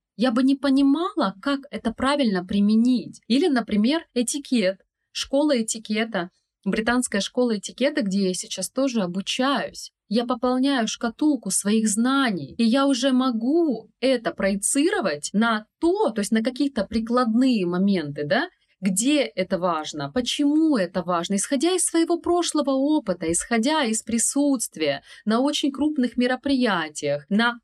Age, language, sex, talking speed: 20-39, Russian, female, 130 wpm